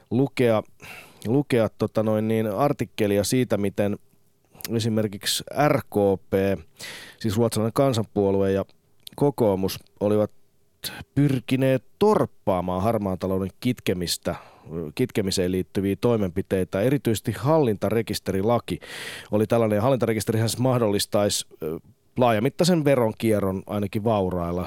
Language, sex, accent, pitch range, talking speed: Finnish, male, native, 95-130 Hz, 75 wpm